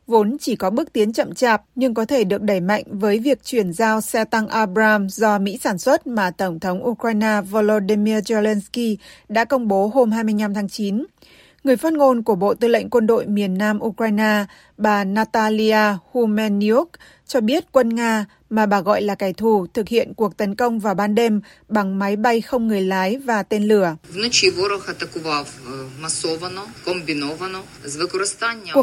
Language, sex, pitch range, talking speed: Vietnamese, female, 200-240 Hz, 165 wpm